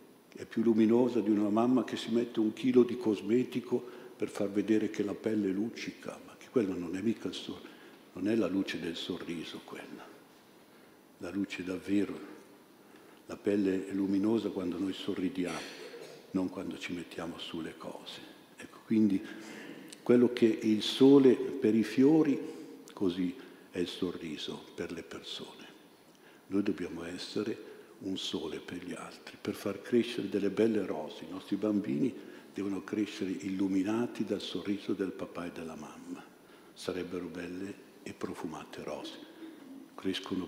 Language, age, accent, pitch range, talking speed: Italian, 60-79, native, 95-115 Hz, 150 wpm